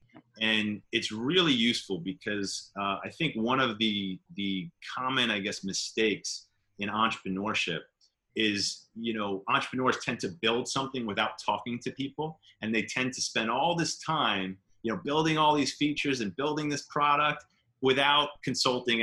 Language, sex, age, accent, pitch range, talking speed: English, male, 30-49, American, 100-135 Hz, 160 wpm